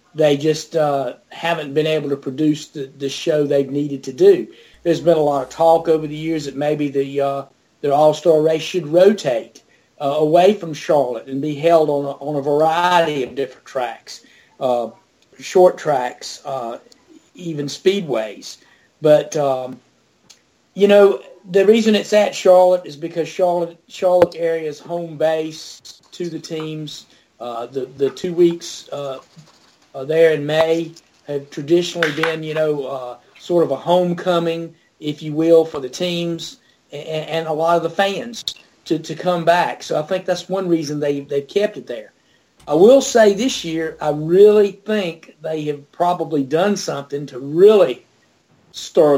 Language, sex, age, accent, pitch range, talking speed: English, male, 40-59, American, 145-180 Hz, 165 wpm